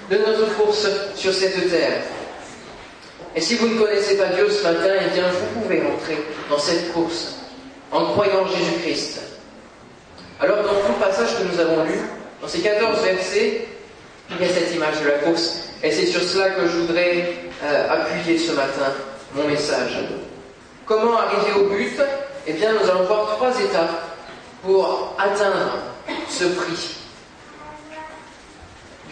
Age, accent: 40-59, French